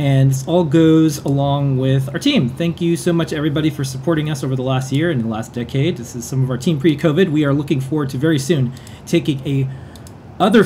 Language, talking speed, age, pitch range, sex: English, 230 wpm, 30-49, 130-165 Hz, male